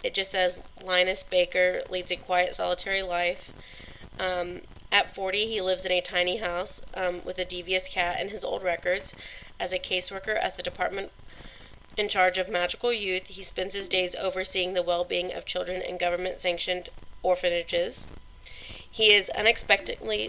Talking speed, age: 160 wpm, 30-49